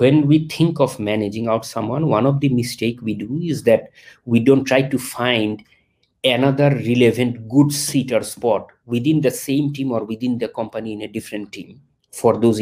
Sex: male